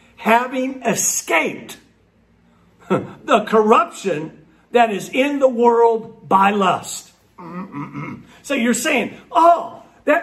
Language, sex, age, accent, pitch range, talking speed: English, male, 50-69, American, 220-295 Hz, 110 wpm